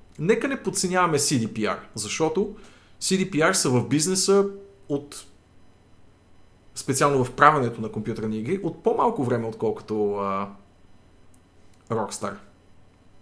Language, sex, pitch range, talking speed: Bulgarian, male, 105-145 Hz, 100 wpm